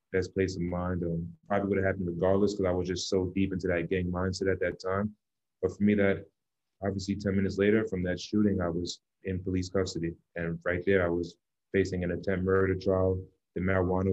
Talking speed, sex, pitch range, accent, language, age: 210 wpm, male, 90-100 Hz, American, English, 30-49